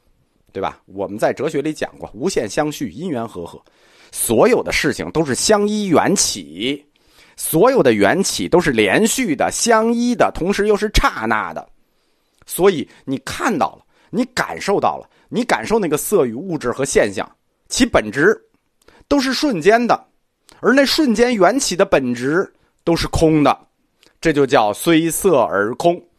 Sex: male